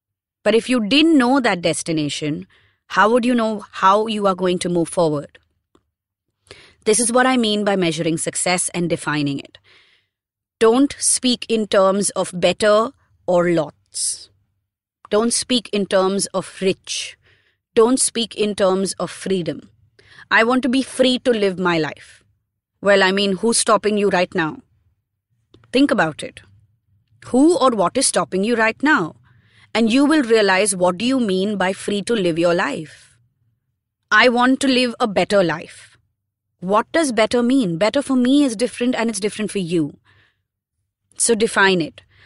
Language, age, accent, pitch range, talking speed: English, 30-49, Indian, 150-230 Hz, 165 wpm